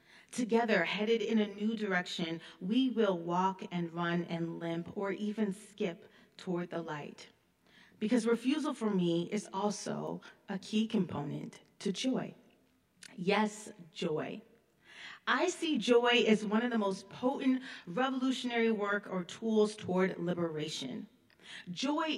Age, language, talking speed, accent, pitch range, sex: 30-49, English, 130 wpm, American, 175-225 Hz, female